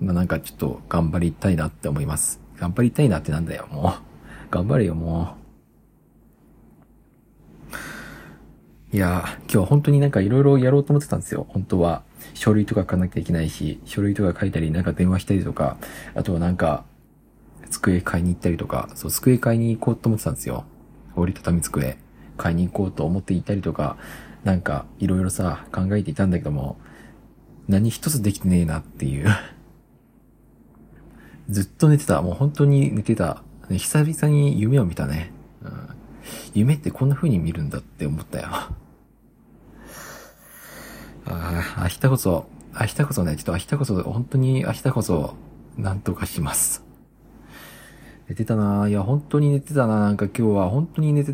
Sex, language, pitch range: male, Japanese, 85-120 Hz